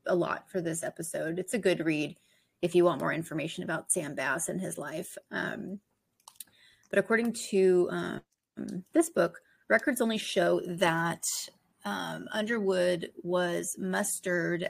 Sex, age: female, 30-49